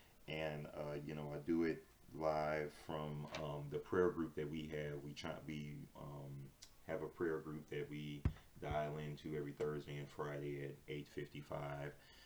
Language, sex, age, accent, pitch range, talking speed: English, male, 30-49, American, 70-80 Hz, 175 wpm